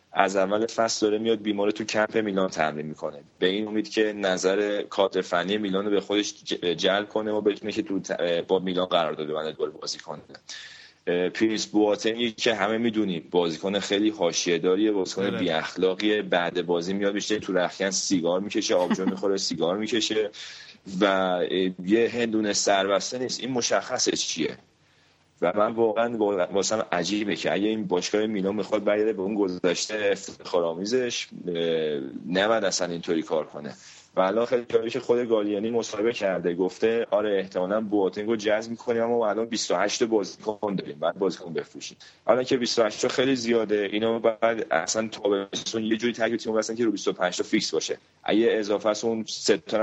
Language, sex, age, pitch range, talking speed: Persian, male, 30-49, 95-110 Hz, 160 wpm